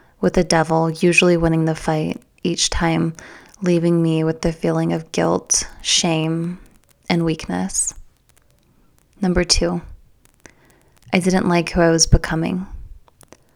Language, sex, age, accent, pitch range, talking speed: English, female, 20-39, American, 155-175 Hz, 125 wpm